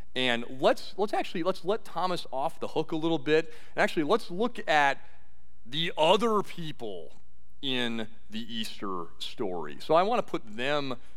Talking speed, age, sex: 160 wpm, 40-59, male